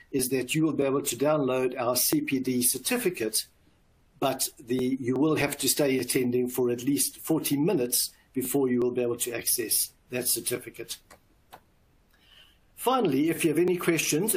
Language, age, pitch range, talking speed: English, 60-79, 125-150 Hz, 160 wpm